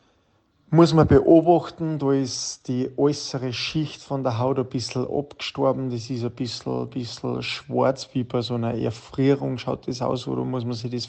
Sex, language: male, German